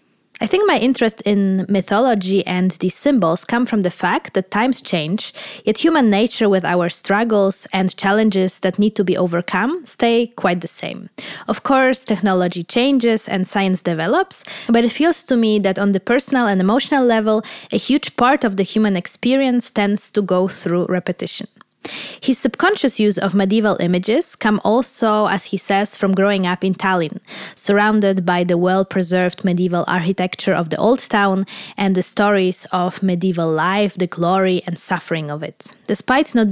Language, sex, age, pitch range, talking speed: English, female, 20-39, 185-225 Hz, 170 wpm